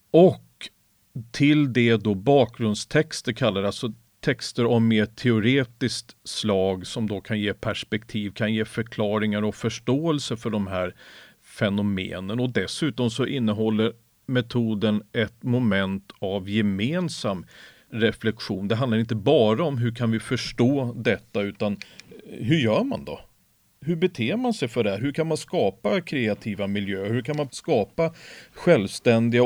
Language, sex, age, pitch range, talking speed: Swedish, male, 40-59, 105-130 Hz, 140 wpm